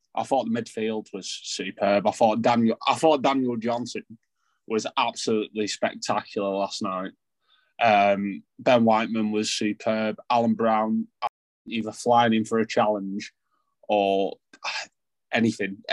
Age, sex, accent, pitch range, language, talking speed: 20-39, male, British, 110-150 Hz, English, 125 wpm